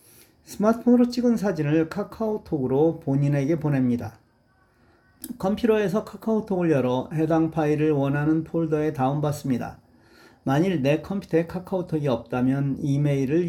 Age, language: 40-59, Korean